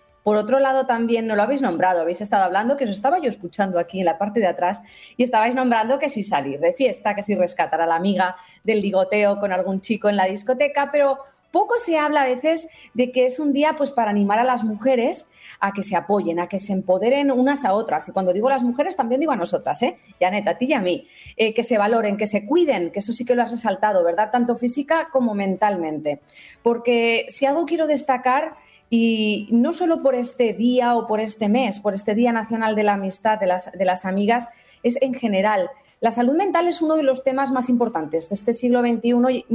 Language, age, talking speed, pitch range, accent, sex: Spanish, 30-49, 235 wpm, 200-265 Hz, Spanish, female